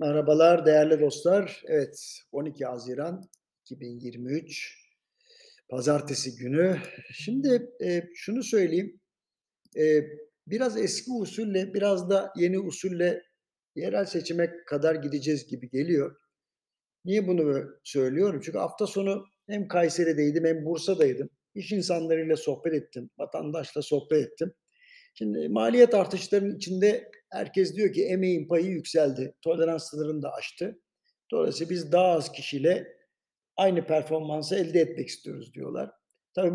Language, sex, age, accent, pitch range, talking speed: Turkish, male, 60-79, native, 155-200 Hz, 115 wpm